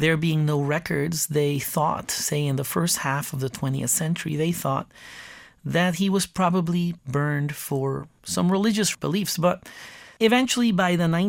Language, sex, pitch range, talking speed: English, male, 140-170 Hz, 160 wpm